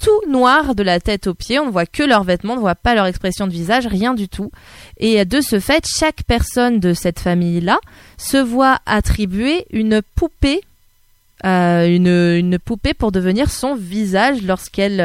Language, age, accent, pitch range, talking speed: French, 20-39, French, 175-235 Hz, 185 wpm